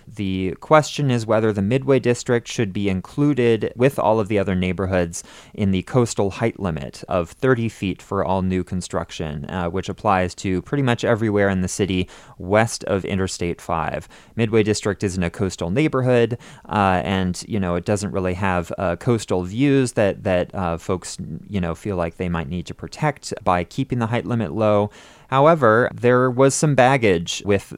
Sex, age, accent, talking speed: male, 30-49, American, 180 wpm